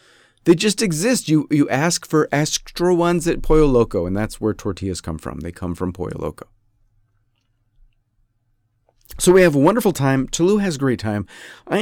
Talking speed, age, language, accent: 180 wpm, 40-59, English, American